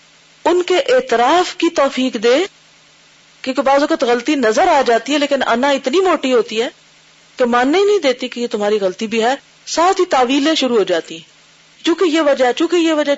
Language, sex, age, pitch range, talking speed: Urdu, female, 40-59, 185-300 Hz, 205 wpm